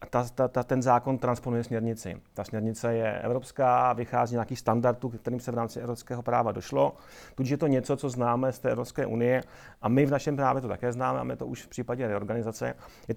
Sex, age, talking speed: male, 30-49, 210 wpm